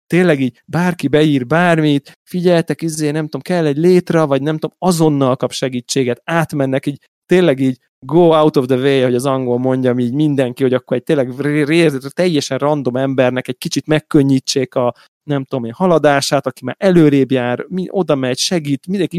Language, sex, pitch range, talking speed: Hungarian, male, 130-155 Hz, 190 wpm